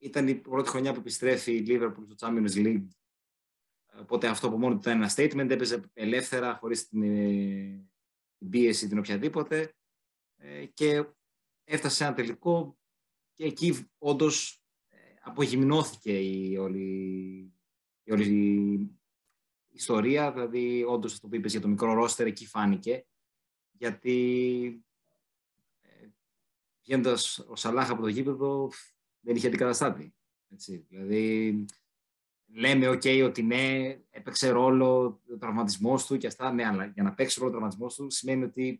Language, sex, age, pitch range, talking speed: Greek, male, 30-49, 105-130 Hz, 140 wpm